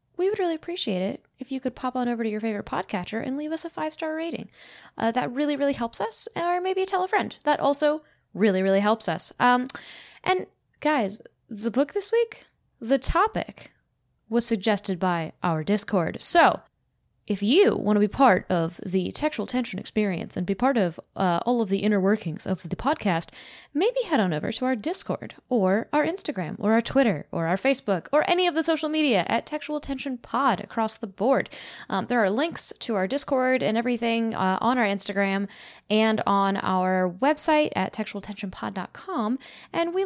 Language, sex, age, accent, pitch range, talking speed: English, female, 10-29, American, 200-295 Hz, 190 wpm